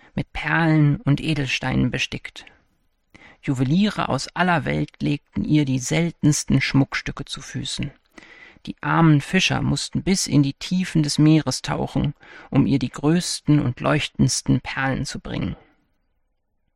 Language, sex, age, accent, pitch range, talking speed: German, male, 40-59, German, 140-175 Hz, 130 wpm